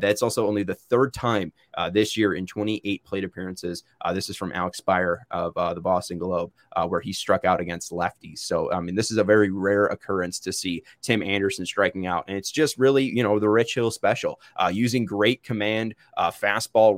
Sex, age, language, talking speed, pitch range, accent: male, 20-39, English, 220 wpm, 100-120 Hz, American